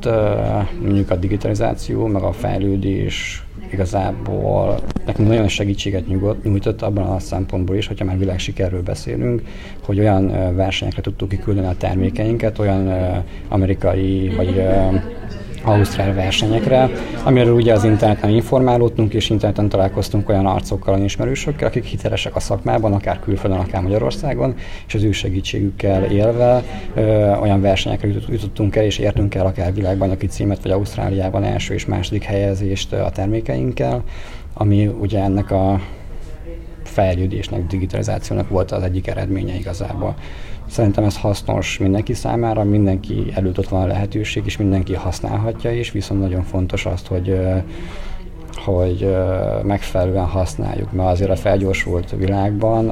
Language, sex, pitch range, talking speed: Hungarian, male, 95-105 Hz, 130 wpm